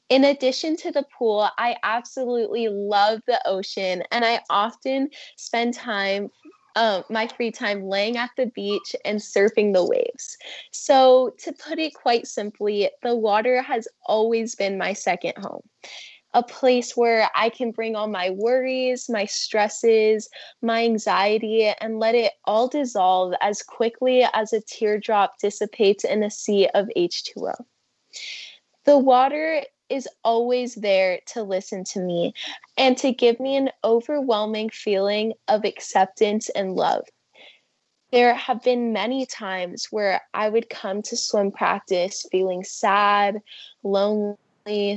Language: English